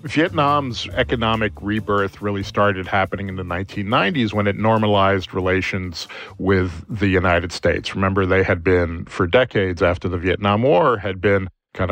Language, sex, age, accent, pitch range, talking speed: English, male, 40-59, American, 95-115 Hz, 150 wpm